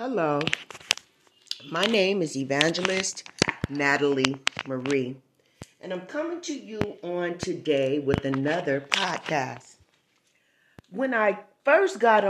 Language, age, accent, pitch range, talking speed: English, 40-59, American, 170-240 Hz, 100 wpm